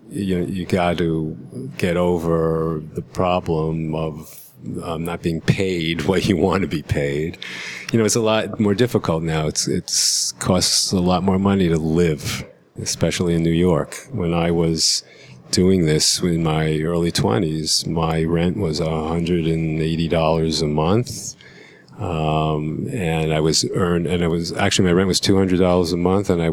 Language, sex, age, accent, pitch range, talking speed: English, male, 40-59, American, 80-95 Hz, 175 wpm